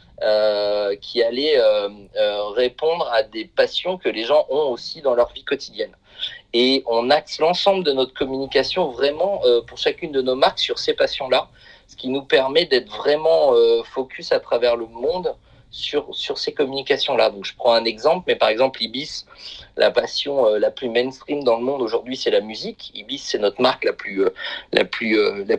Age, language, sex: 30-49, French, male